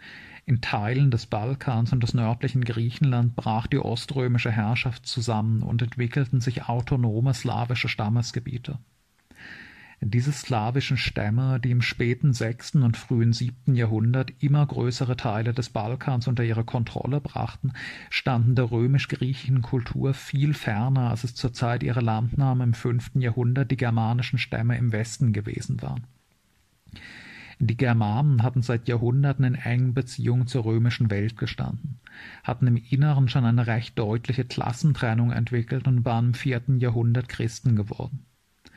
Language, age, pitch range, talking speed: German, 50-69, 115-130 Hz, 140 wpm